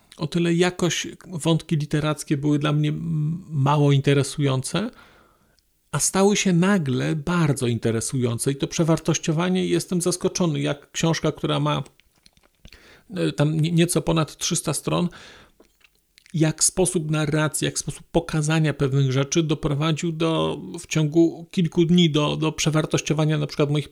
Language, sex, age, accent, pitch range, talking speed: Polish, male, 40-59, native, 135-165 Hz, 125 wpm